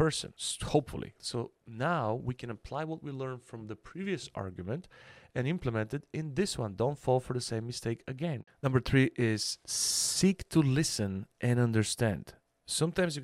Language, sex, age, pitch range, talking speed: English, male, 40-59, 110-140 Hz, 170 wpm